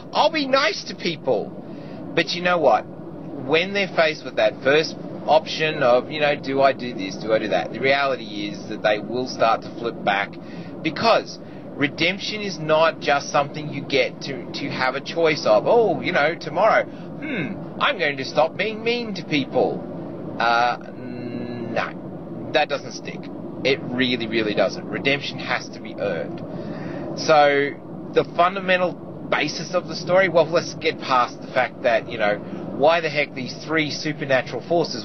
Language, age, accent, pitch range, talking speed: English, 30-49, Australian, 125-170 Hz, 175 wpm